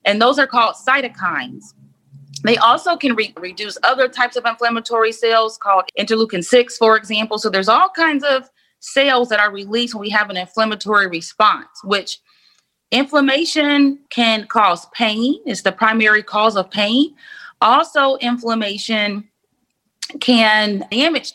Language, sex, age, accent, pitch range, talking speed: English, female, 30-49, American, 205-245 Hz, 135 wpm